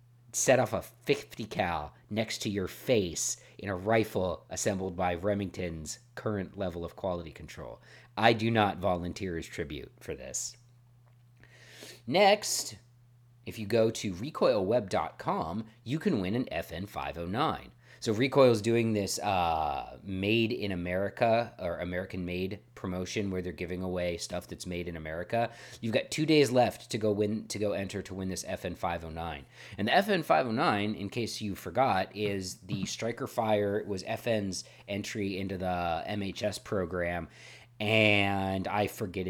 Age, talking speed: 40-59, 150 wpm